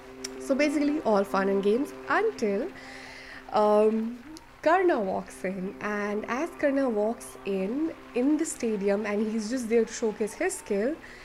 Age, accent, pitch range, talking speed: 20-39, Indian, 210-275 Hz, 145 wpm